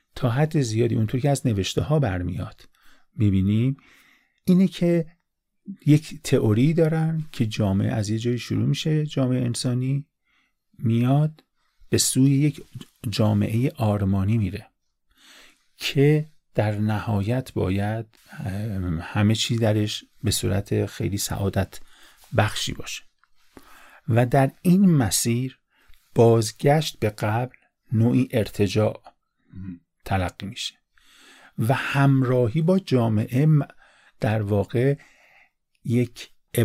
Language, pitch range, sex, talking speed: Persian, 105-145 Hz, male, 100 wpm